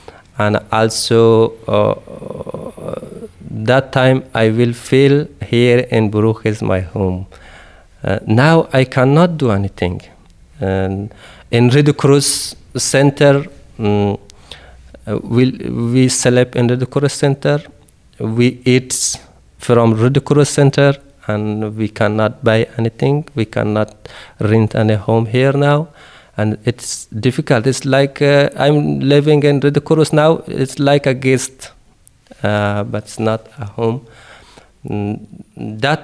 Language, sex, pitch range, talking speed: Dutch, male, 110-135 Hz, 115 wpm